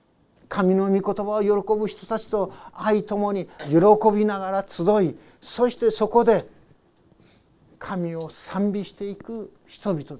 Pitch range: 150-195 Hz